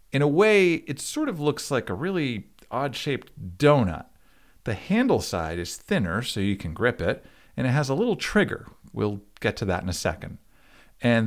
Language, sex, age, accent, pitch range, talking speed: English, male, 50-69, American, 95-140 Hz, 190 wpm